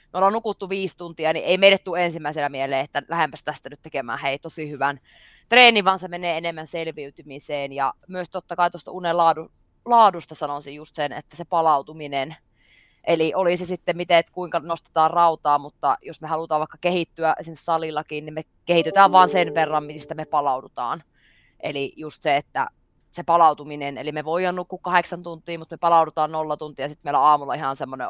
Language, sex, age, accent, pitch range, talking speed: Finnish, female, 20-39, native, 145-175 Hz, 190 wpm